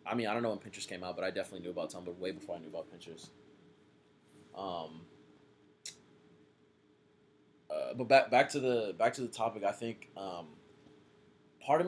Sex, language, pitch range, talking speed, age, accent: male, English, 95-120 Hz, 185 wpm, 20-39, American